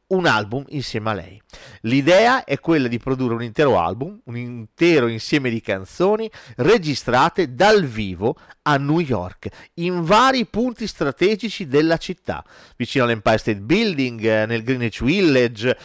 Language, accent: Italian, native